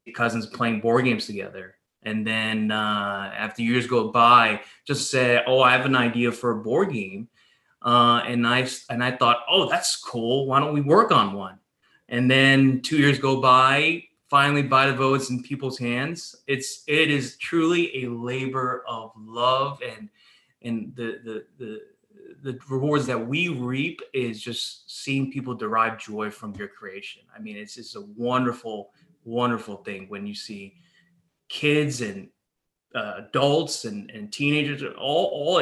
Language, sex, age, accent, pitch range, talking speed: English, male, 20-39, American, 115-140 Hz, 165 wpm